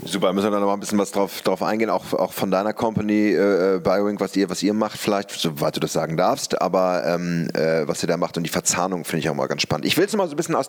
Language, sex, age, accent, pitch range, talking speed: English, male, 30-49, German, 95-125 Hz, 305 wpm